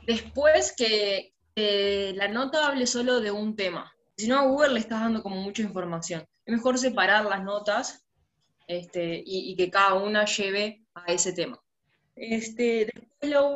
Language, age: Spanish, 20-39